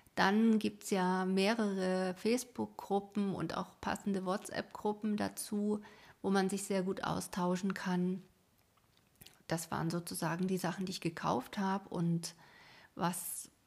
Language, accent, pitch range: German, German, 165-200 Hz